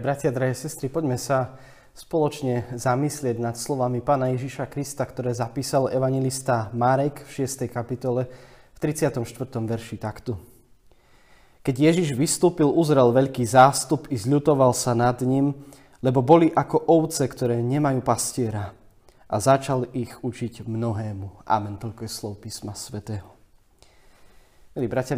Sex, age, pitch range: male, 20-39, 120-140 Hz